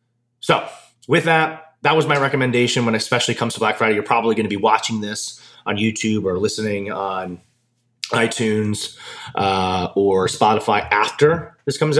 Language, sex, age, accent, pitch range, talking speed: English, male, 30-49, American, 105-140 Hz, 165 wpm